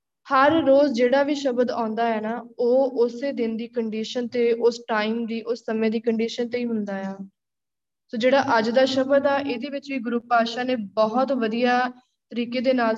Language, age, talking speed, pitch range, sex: Punjabi, 20-39, 195 wpm, 230-275 Hz, female